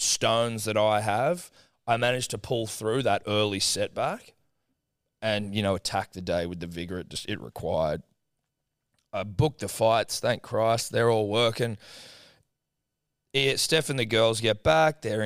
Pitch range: 100-125 Hz